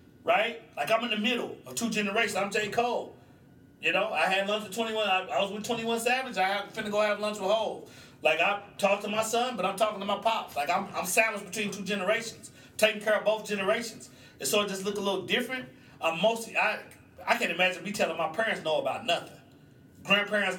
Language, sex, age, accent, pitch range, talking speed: English, male, 40-59, American, 175-225 Hz, 225 wpm